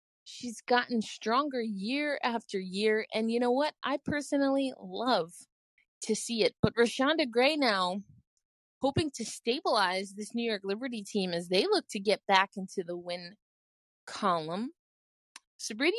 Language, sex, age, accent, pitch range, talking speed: English, female, 20-39, American, 205-275 Hz, 145 wpm